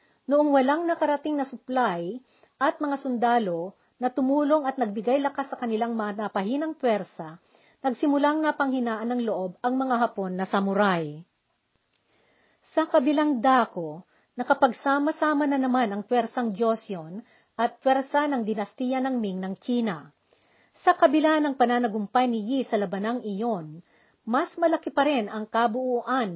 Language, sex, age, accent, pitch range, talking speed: Filipino, female, 50-69, native, 215-275 Hz, 135 wpm